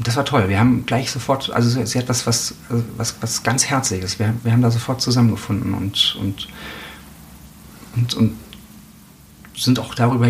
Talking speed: 170 wpm